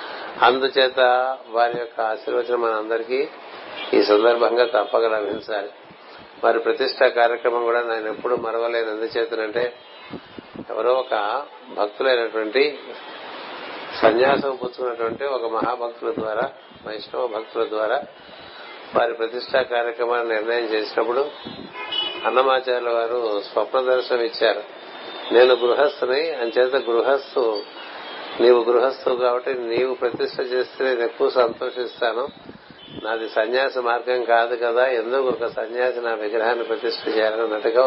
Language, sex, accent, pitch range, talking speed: Telugu, male, native, 115-125 Hz, 95 wpm